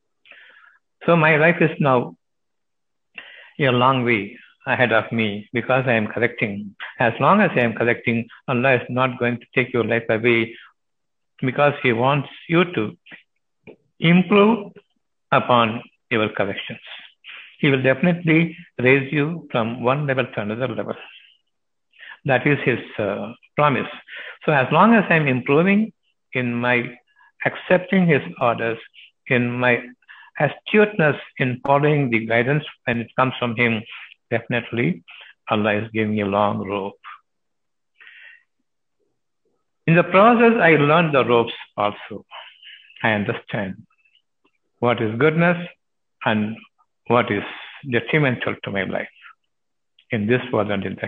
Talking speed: 135 wpm